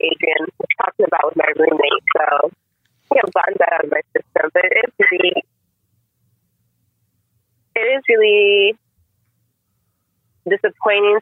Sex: female